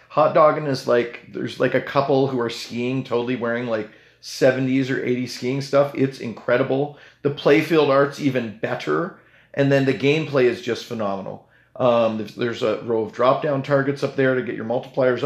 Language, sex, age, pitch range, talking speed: English, male, 30-49, 115-140 Hz, 190 wpm